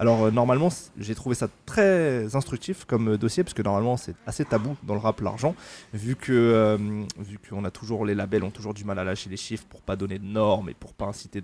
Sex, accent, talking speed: male, French, 240 wpm